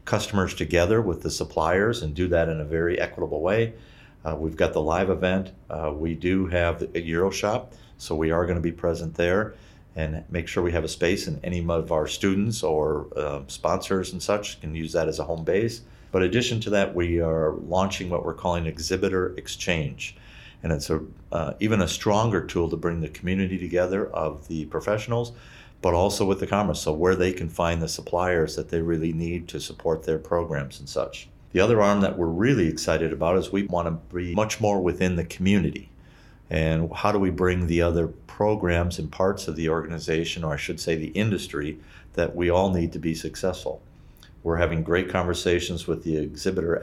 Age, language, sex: 50-69, English, male